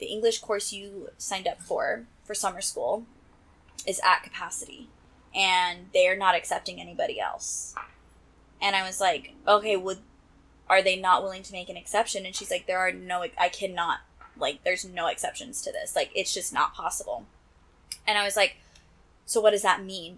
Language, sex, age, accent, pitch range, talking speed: English, female, 20-39, American, 185-210 Hz, 185 wpm